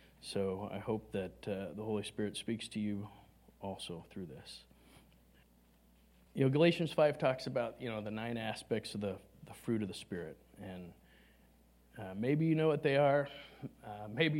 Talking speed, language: 175 wpm, English